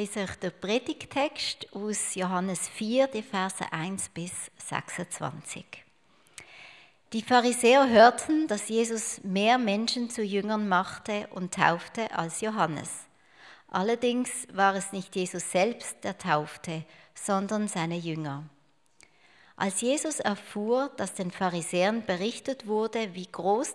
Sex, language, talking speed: female, German, 115 wpm